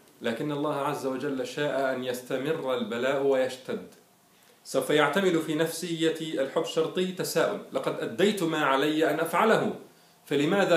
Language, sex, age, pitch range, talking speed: Arabic, male, 40-59, 125-160 Hz, 130 wpm